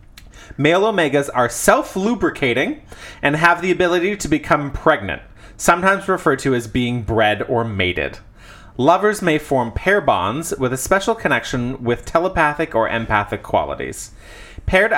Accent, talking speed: American, 135 wpm